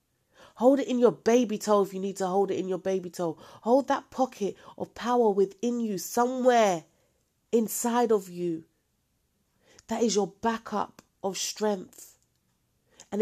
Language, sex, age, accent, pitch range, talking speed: English, female, 30-49, British, 185-235 Hz, 155 wpm